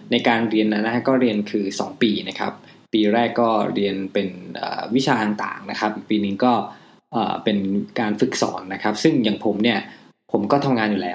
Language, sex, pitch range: Thai, male, 105-130 Hz